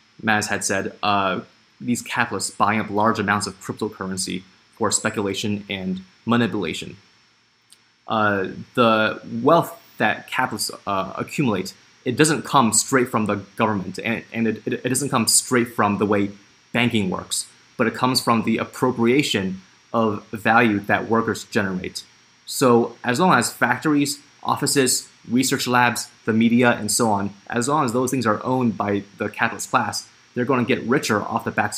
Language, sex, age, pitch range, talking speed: English, male, 20-39, 105-120 Hz, 160 wpm